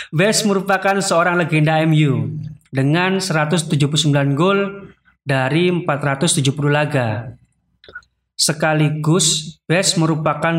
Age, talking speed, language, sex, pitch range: 20-39, 80 wpm, Indonesian, male, 135-170 Hz